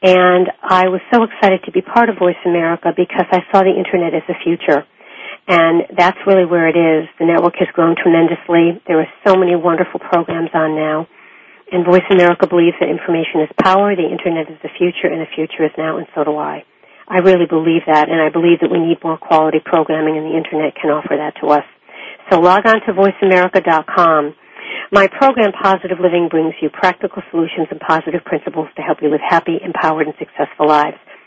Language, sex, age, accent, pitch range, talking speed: English, female, 50-69, American, 165-185 Hz, 205 wpm